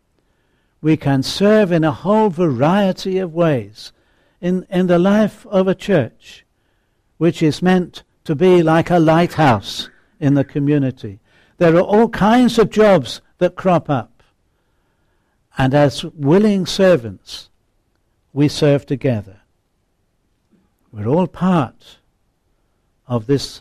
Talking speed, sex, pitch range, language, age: 120 wpm, male, 110-175 Hz, English, 60-79